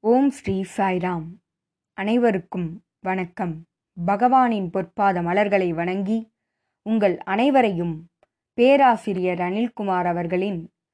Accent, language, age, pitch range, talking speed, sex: native, Tamil, 20-39, 180-225 Hz, 75 wpm, female